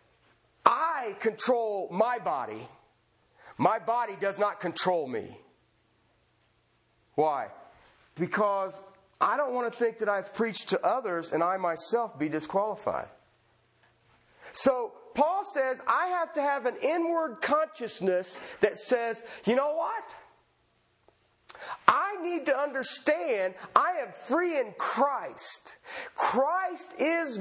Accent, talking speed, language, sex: American, 115 wpm, English, male